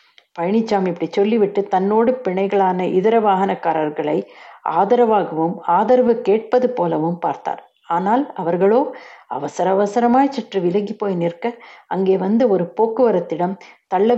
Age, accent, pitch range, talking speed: 60-79, native, 175-230 Hz, 110 wpm